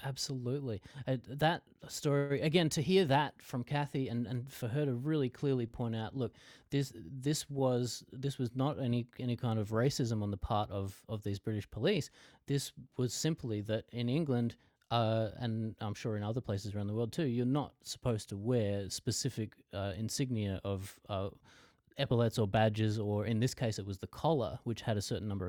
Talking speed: 195 wpm